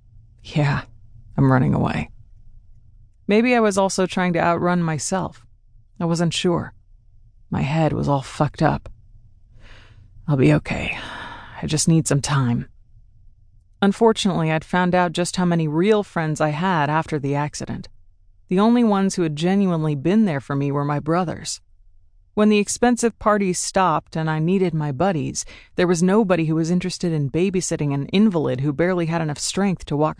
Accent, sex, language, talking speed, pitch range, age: American, female, English, 165 wpm, 110-170 Hz, 30-49